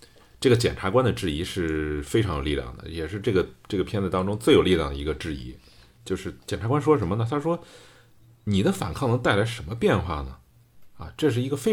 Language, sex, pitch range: Chinese, male, 75-115 Hz